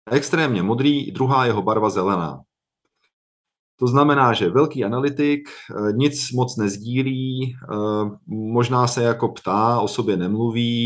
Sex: male